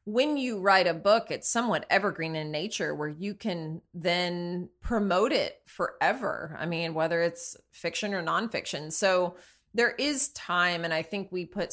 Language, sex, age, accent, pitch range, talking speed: English, female, 20-39, American, 170-210 Hz, 170 wpm